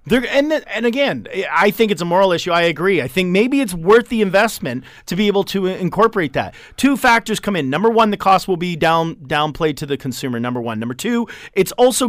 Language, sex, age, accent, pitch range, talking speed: English, male, 30-49, American, 180-245 Hz, 230 wpm